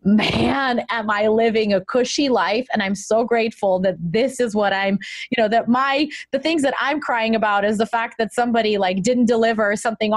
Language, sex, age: English, female, 20-39